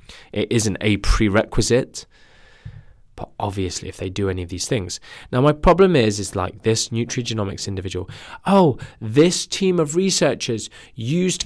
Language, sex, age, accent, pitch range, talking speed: English, male, 20-39, British, 105-160 Hz, 145 wpm